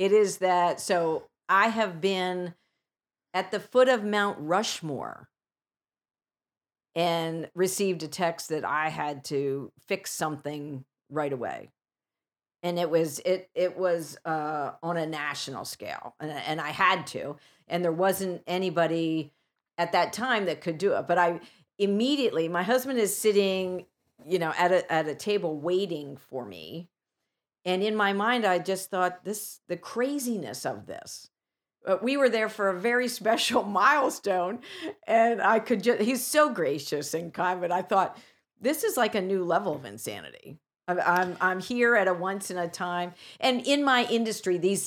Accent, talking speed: American, 165 wpm